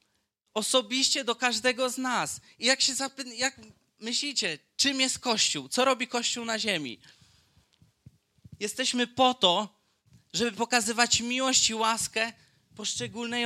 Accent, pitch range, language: native, 185-230 Hz, Polish